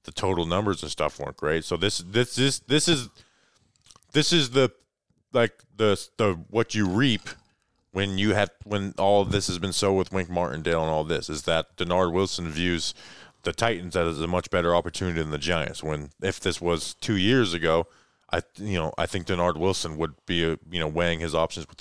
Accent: American